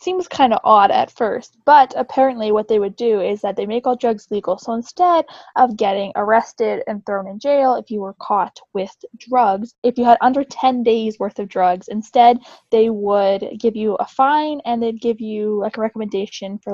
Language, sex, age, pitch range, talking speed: English, female, 10-29, 210-255 Hz, 210 wpm